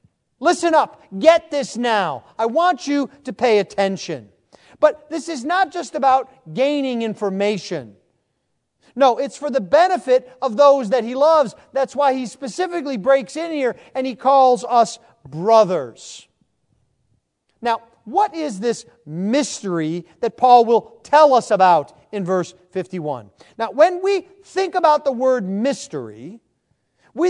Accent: American